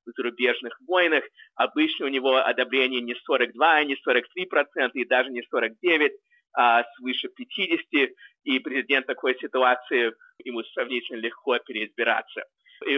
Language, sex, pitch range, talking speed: Russian, male, 130-190 Hz, 125 wpm